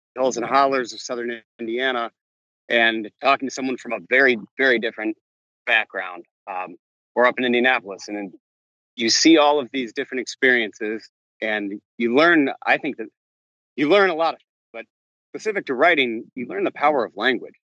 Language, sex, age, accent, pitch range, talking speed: English, male, 30-49, American, 105-125 Hz, 170 wpm